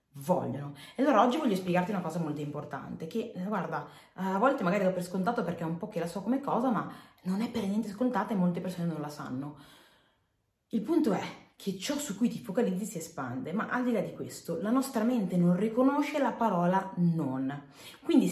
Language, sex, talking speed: Italian, female, 215 wpm